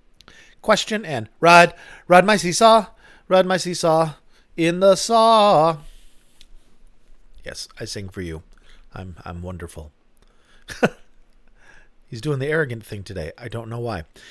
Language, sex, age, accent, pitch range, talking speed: English, male, 40-59, American, 115-175 Hz, 125 wpm